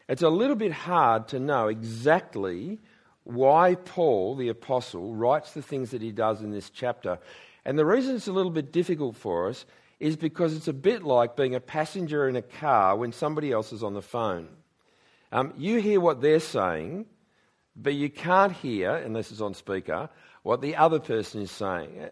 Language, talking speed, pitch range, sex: English, 190 wpm, 115-175 Hz, male